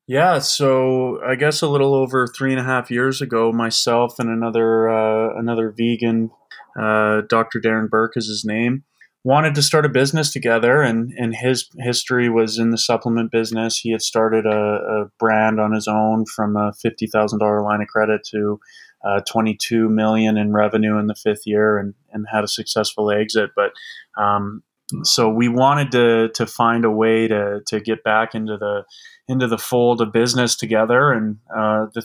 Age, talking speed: 20-39, 185 wpm